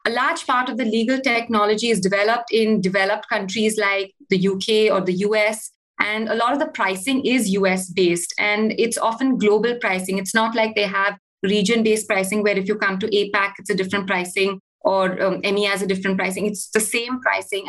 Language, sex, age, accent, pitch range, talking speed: English, female, 30-49, Indian, 200-235 Hz, 200 wpm